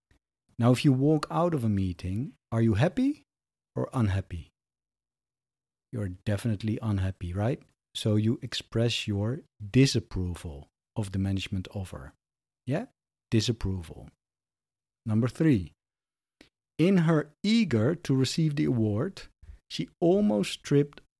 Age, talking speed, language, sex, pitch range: 50-69, 115 wpm, English, male, 105-145 Hz